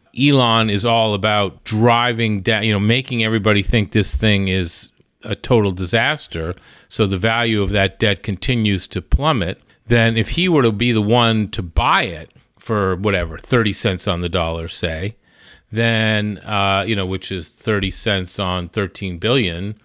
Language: English